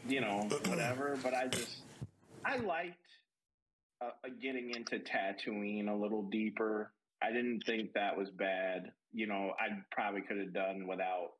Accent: American